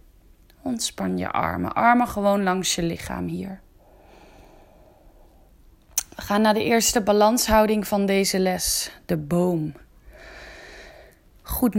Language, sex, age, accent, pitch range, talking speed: Dutch, female, 20-39, Dutch, 185-245 Hz, 105 wpm